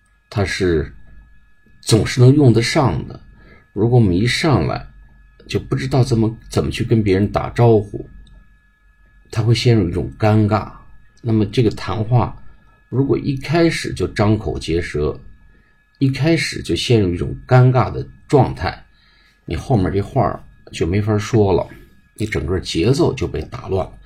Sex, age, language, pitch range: male, 50-69, Chinese, 85-120 Hz